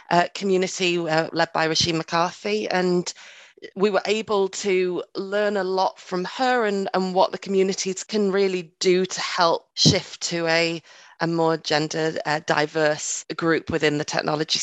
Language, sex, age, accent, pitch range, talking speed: English, female, 30-49, British, 160-190 Hz, 160 wpm